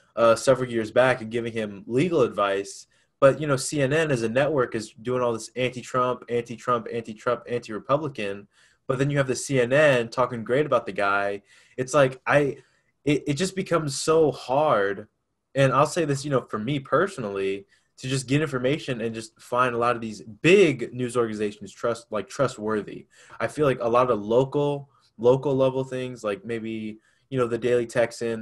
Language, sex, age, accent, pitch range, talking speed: English, male, 20-39, American, 110-130 Hz, 185 wpm